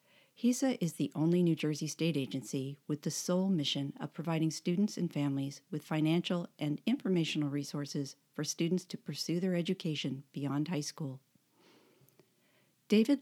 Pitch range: 145-180 Hz